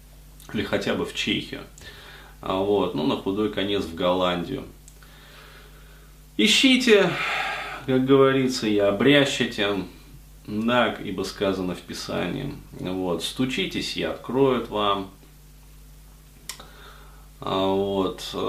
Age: 30-49